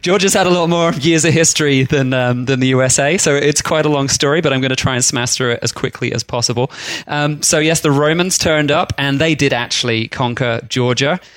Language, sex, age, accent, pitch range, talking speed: English, male, 20-39, British, 125-165 Hz, 240 wpm